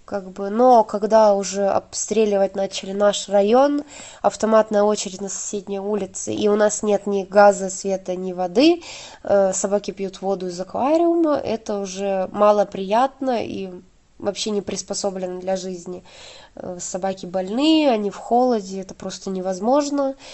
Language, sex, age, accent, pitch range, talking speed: Ukrainian, female, 20-39, native, 195-235 Hz, 140 wpm